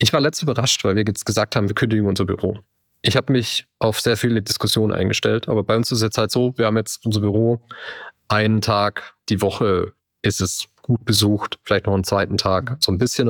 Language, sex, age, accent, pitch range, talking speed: German, male, 30-49, German, 110-125 Hz, 225 wpm